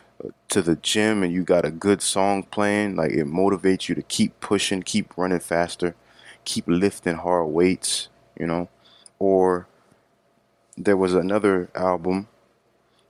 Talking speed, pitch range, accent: 140 wpm, 85-95 Hz, American